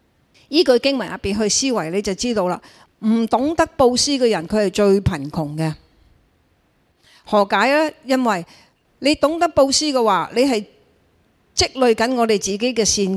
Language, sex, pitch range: Chinese, female, 185-250 Hz